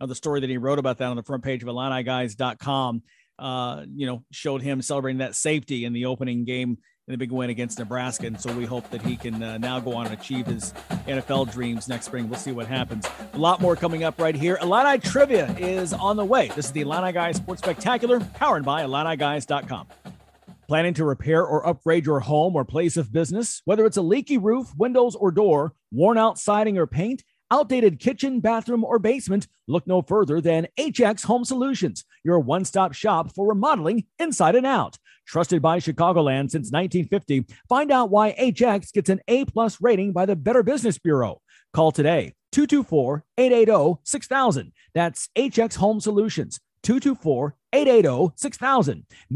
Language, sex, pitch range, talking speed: English, male, 135-220 Hz, 175 wpm